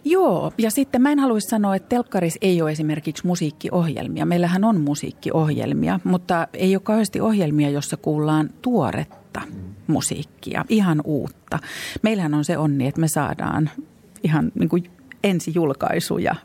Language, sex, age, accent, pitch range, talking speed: Finnish, female, 40-59, native, 145-190 Hz, 135 wpm